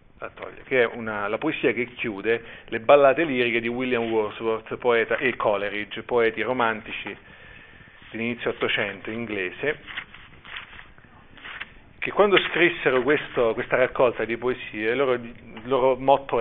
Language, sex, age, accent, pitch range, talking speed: Italian, male, 40-59, native, 110-135 Hz, 125 wpm